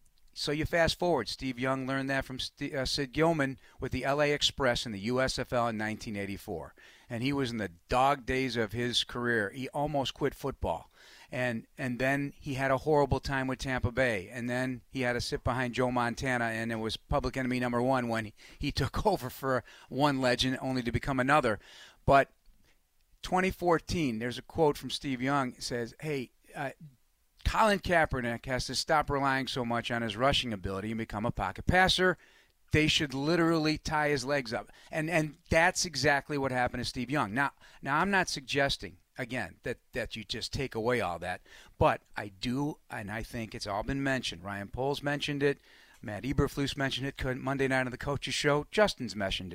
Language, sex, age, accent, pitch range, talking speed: English, male, 40-59, American, 120-145 Hz, 195 wpm